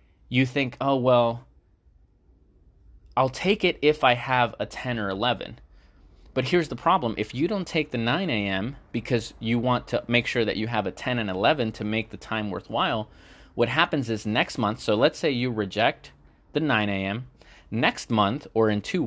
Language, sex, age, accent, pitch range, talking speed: English, male, 20-39, American, 100-130 Hz, 190 wpm